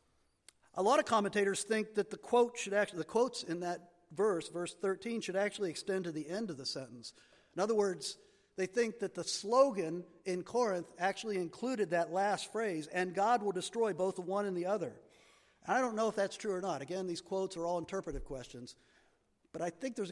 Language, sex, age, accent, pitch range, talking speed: English, male, 50-69, American, 170-225 Hz, 210 wpm